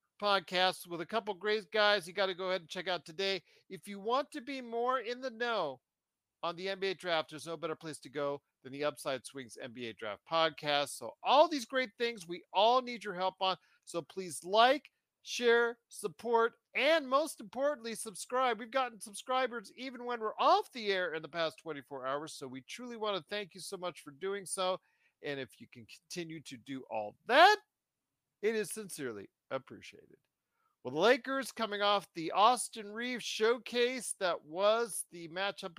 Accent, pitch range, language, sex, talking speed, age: American, 155-230 Hz, English, male, 190 wpm, 50-69